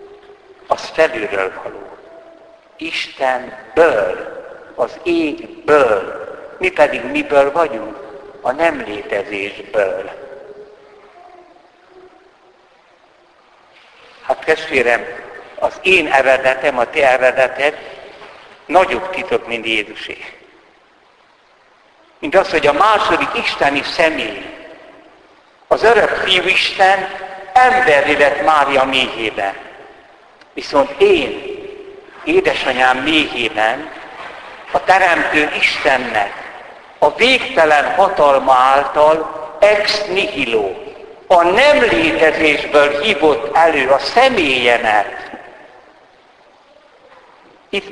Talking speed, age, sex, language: 75 wpm, 60-79, male, Hungarian